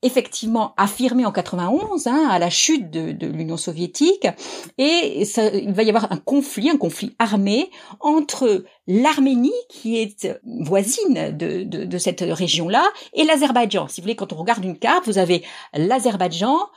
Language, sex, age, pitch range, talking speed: French, female, 50-69, 190-260 Hz, 160 wpm